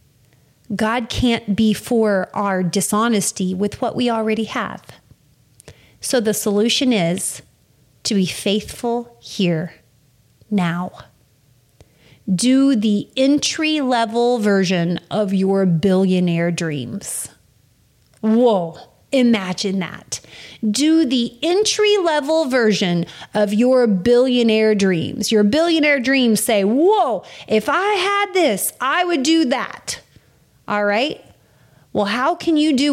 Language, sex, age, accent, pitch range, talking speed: English, female, 30-49, American, 180-250 Hz, 110 wpm